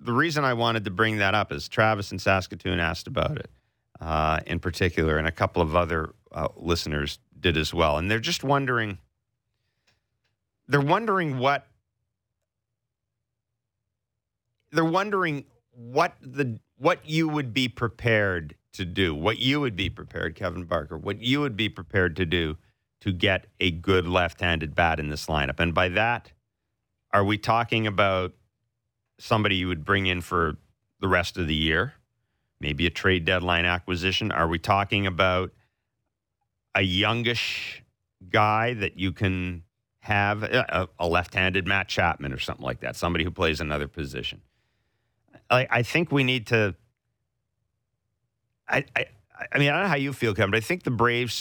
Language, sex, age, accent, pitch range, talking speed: English, male, 40-59, American, 90-115 Hz, 160 wpm